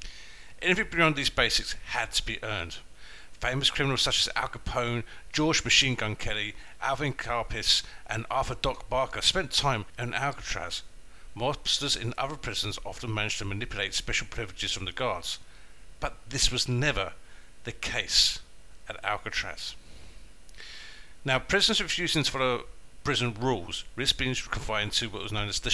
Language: English